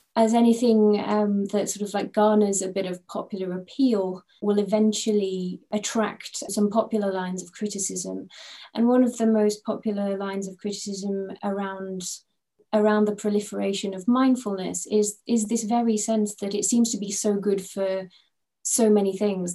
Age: 30-49